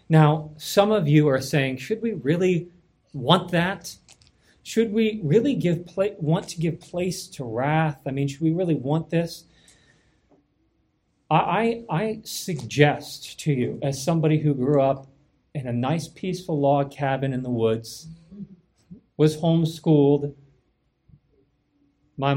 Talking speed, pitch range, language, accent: 140 wpm, 135-165 Hz, English, American